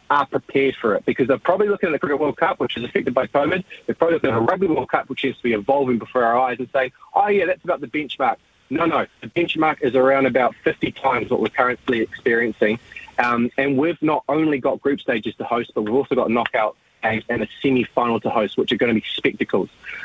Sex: male